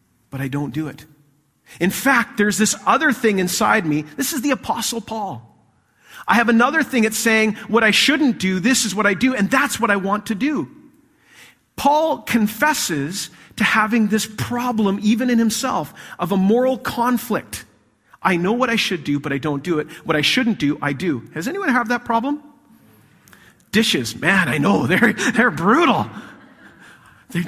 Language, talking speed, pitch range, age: English, 180 wpm, 145-230 Hz, 40-59